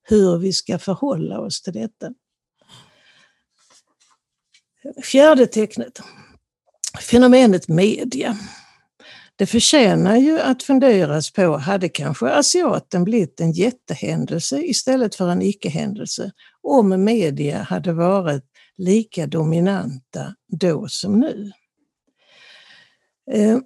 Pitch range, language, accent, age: 175-240 Hz, Swedish, native, 60-79